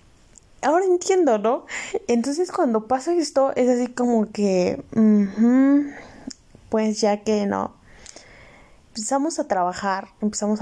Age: 20-39